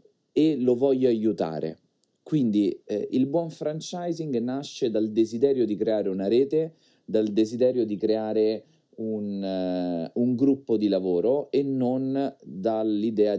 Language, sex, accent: Italian, male, native